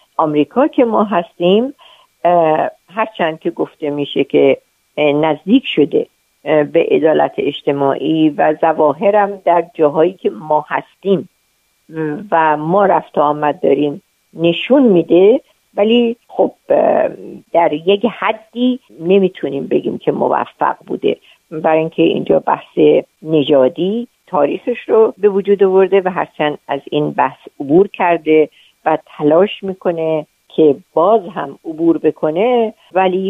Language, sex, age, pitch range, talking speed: Persian, female, 50-69, 150-210 Hz, 115 wpm